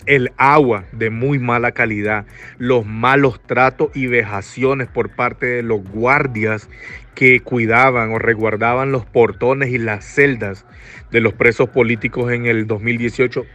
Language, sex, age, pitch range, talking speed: Spanish, male, 50-69, 110-135 Hz, 140 wpm